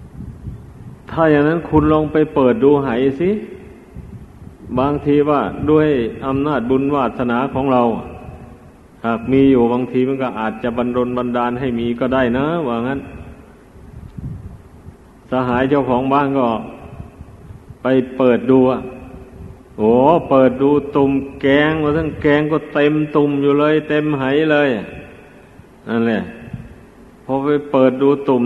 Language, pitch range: Thai, 120-145 Hz